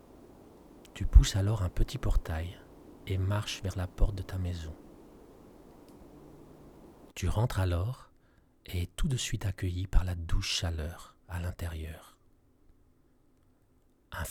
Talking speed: 125 wpm